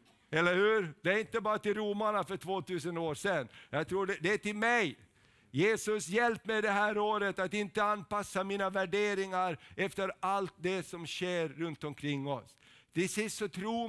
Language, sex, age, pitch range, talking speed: Swedish, male, 50-69, 180-210 Hz, 180 wpm